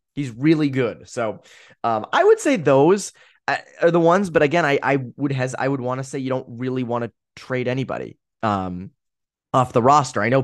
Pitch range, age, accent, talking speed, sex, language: 115-155 Hz, 20-39, American, 205 wpm, male, English